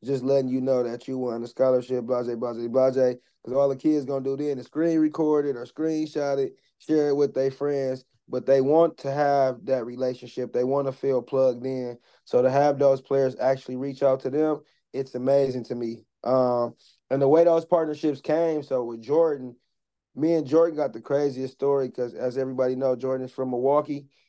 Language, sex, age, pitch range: English, male, 20-39, 125-145 Hz